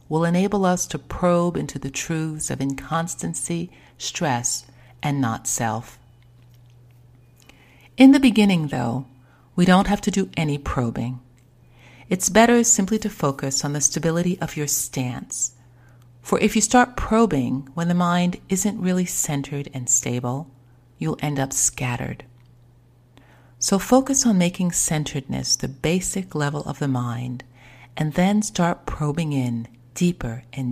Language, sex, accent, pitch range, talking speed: English, female, American, 120-165 Hz, 135 wpm